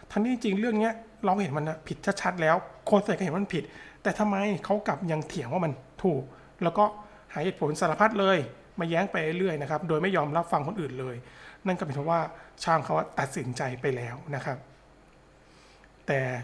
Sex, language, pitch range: male, Thai, 145-185 Hz